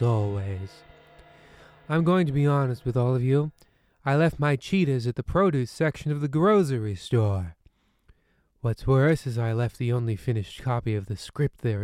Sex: male